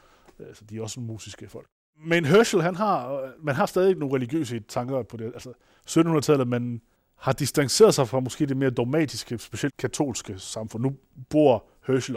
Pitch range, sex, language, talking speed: 120-145 Hz, male, Danish, 175 wpm